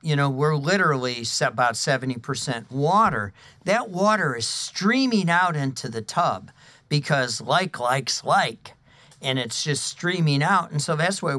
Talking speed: 150 wpm